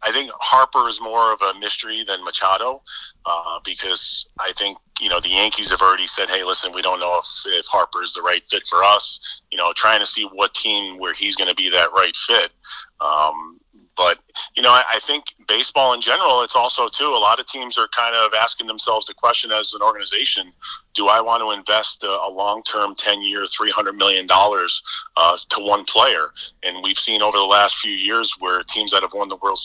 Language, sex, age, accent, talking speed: English, male, 30-49, American, 215 wpm